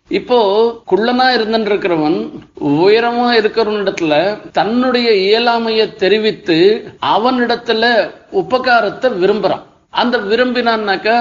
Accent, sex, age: native, male, 50-69